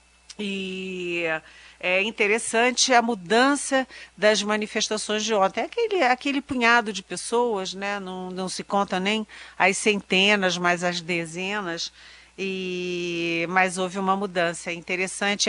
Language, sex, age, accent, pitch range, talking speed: Portuguese, female, 50-69, Brazilian, 165-200 Hz, 130 wpm